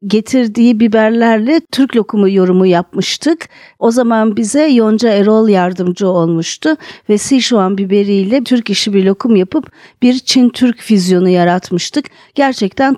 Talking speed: 120 wpm